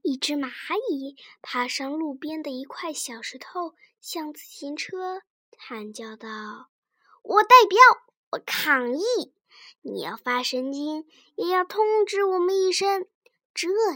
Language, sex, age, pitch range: Chinese, male, 10-29, 270-425 Hz